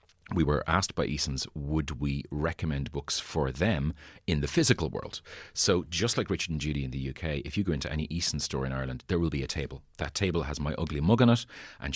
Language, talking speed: English, 235 wpm